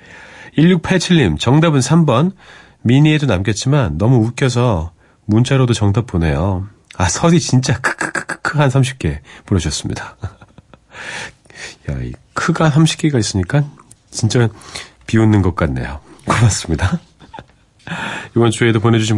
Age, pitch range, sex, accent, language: 40-59, 95-145 Hz, male, native, Korean